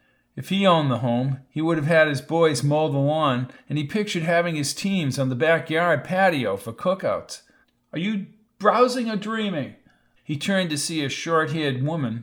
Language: English